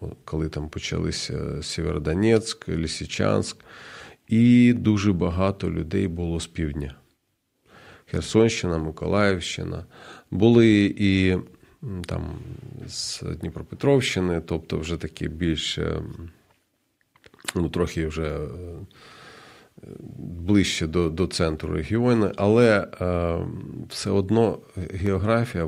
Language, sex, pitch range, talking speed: Ukrainian, male, 85-105 Hz, 85 wpm